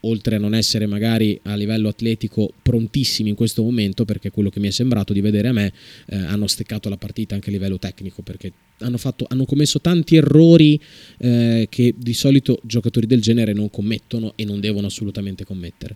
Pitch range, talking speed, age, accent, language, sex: 105-125 Hz, 195 wpm, 20-39, native, Italian, male